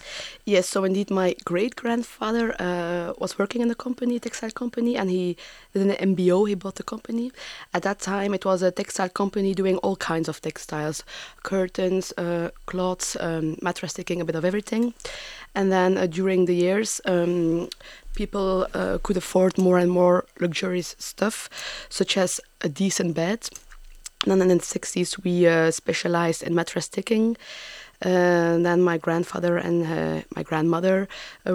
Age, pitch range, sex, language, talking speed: 20-39, 175-200 Hz, female, English, 165 wpm